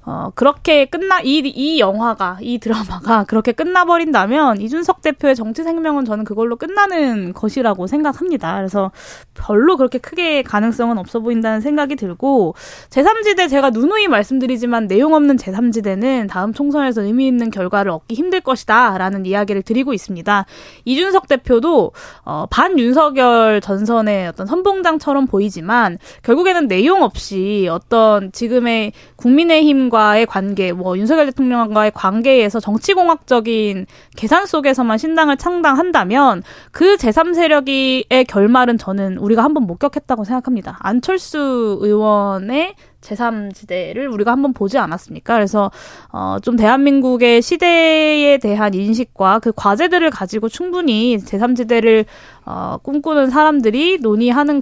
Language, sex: Korean, female